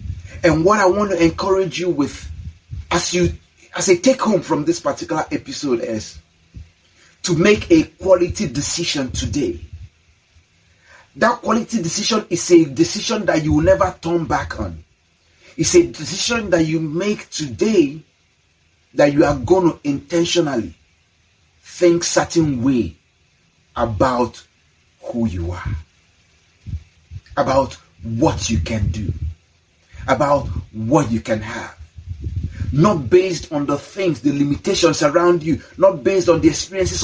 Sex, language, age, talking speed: male, English, 40-59, 135 wpm